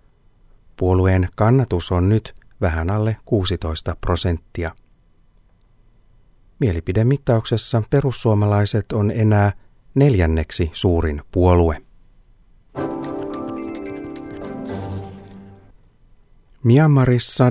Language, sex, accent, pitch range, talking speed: Finnish, male, native, 90-115 Hz, 55 wpm